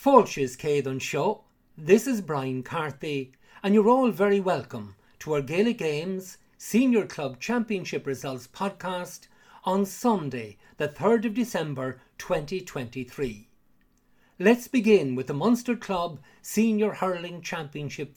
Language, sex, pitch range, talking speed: English, male, 140-200 Hz, 120 wpm